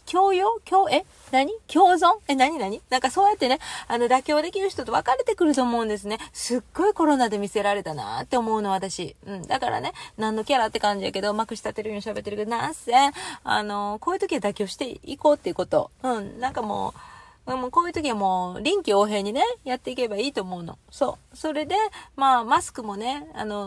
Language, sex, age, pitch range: Japanese, female, 30-49, 215-295 Hz